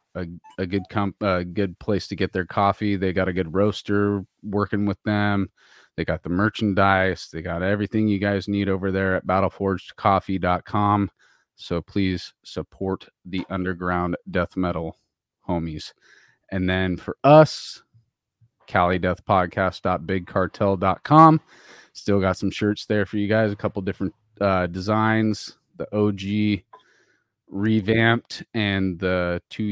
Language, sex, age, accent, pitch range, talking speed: English, male, 30-49, American, 90-100 Hz, 130 wpm